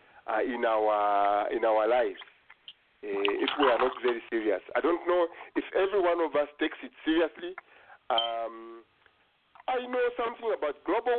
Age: 50-69